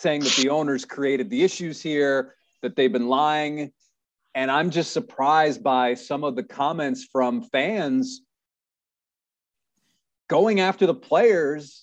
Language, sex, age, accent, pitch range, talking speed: English, male, 30-49, American, 145-190 Hz, 135 wpm